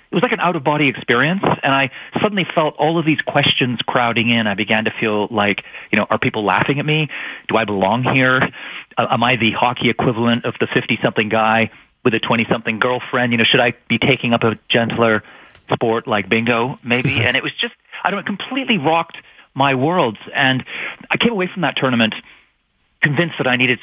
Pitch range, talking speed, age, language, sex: 115-150 Hz, 205 wpm, 40-59, English, male